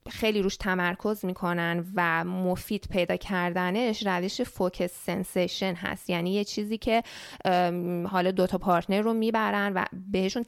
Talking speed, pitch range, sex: 135 wpm, 185-225 Hz, female